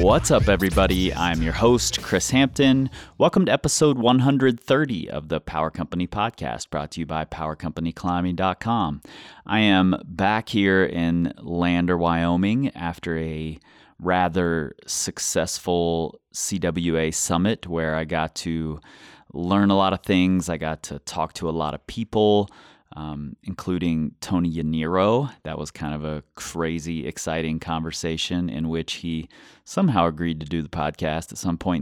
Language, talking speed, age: English, 145 wpm, 30-49